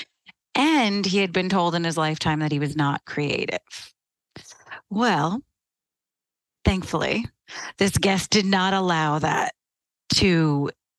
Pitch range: 155-195 Hz